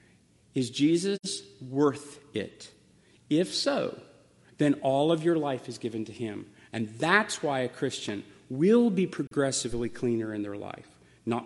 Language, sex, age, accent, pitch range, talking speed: English, male, 40-59, American, 125-180 Hz, 145 wpm